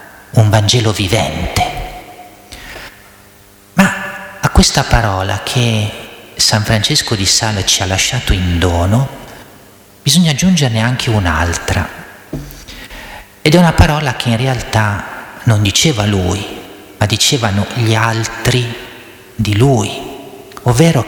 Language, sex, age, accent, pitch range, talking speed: Italian, male, 40-59, native, 100-130 Hz, 110 wpm